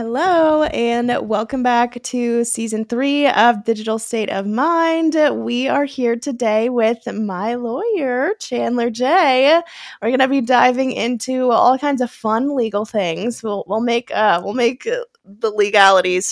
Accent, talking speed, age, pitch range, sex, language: American, 155 wpm, 20-39, 210-260 Hz, female, English